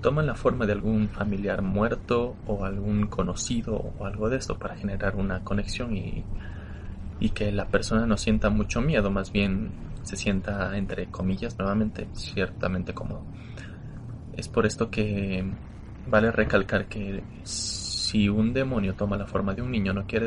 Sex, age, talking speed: male, 20-39, 160 wpm